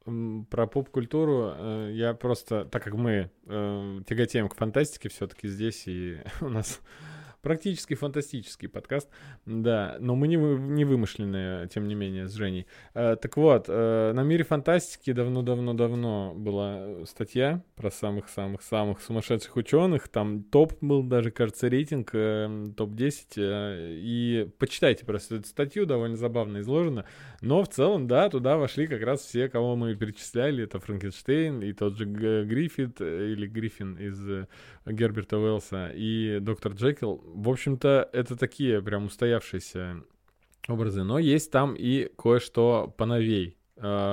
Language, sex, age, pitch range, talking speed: Russian, male, 20-39, 105-135 Hz, 140 wpm